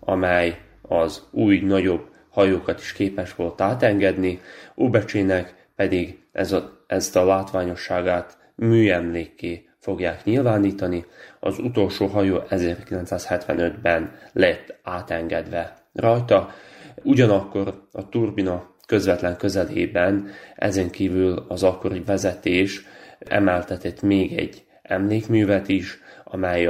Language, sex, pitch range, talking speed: Hungarian, male, 85-100 Hz, 90 wpm